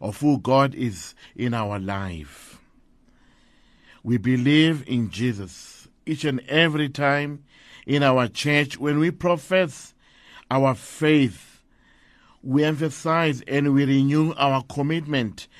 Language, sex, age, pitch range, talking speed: English, male, 50-69, 120-155 Hz, 115 wpm